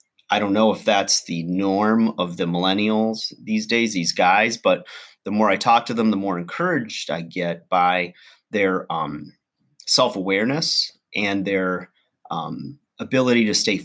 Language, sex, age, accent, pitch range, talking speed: English, male, 30-49, American, 90-110 Hz, 155 wpm